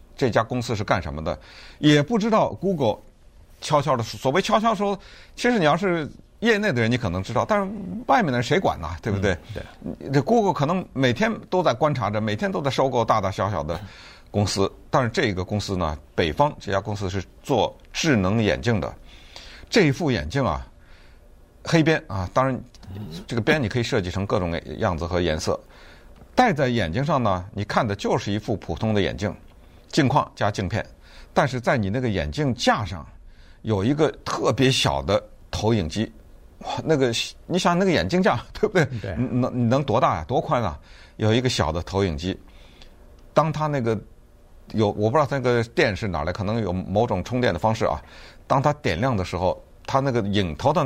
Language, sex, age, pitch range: Chinese, male, 50-69, 95-140 Hz